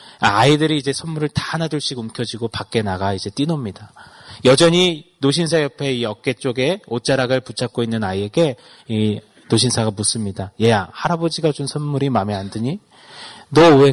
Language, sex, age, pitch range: Korean, male, 30-49, 110-160 Hz